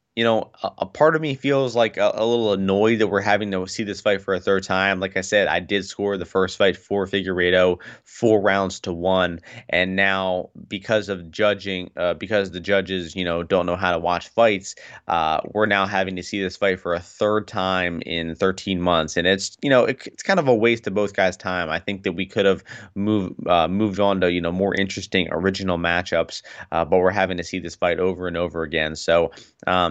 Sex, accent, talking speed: male, American, 235 wpm